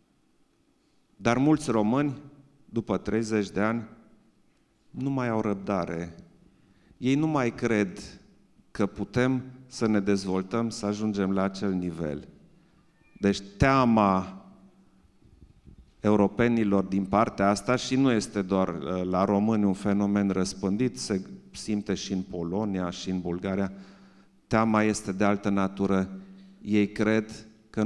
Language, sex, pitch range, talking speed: Romanian, male, 100-130 Hz, 120 wpm